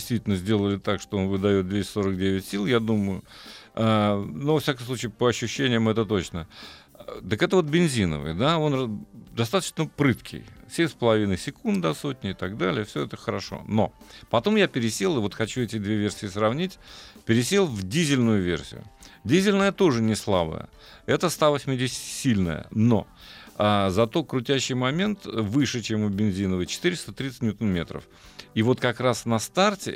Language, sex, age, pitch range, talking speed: Russian, male, 50-69, 100-135 Hz, 150 wpm